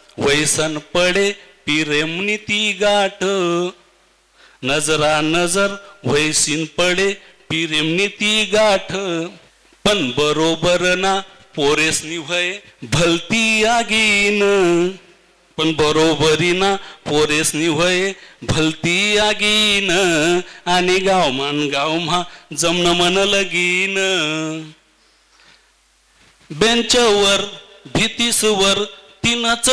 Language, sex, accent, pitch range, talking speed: Marathi, male, native, 160-205 Hz, 80 wpm